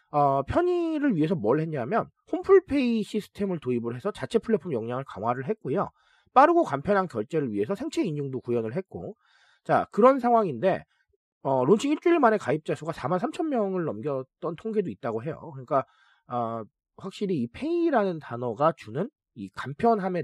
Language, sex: Korean, male